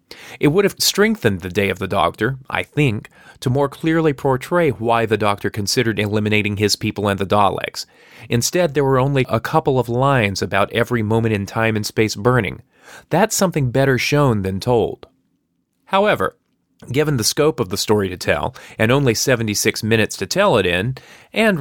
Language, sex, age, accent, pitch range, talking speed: English, male, 30-49, American, 105-140 Hz, 180 wpm